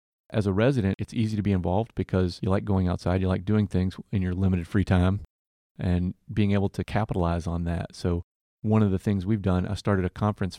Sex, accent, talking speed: male, American, 225 wpm